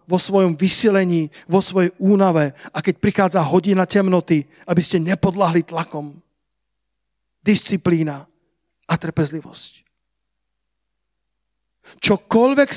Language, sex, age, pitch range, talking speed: Slovak, male, 40-59, 175-205 Hz, 90 wpm